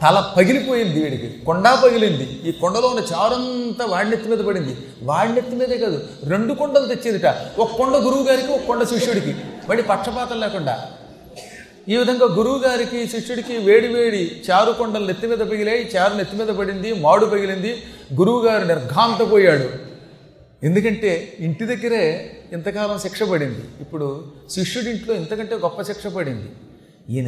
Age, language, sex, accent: 30-49, Telugu, male, native